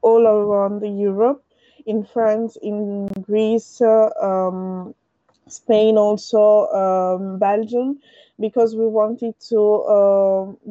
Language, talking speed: English, 100 wpm